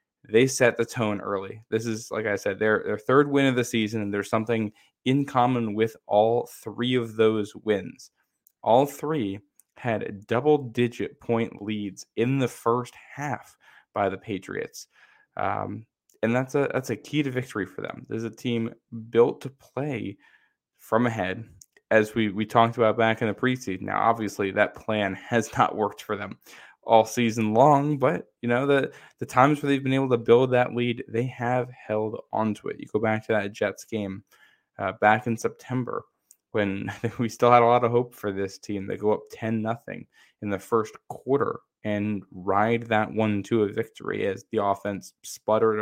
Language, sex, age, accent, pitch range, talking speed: English, male, 10-29, American, 105-120 Hz, 185 wpm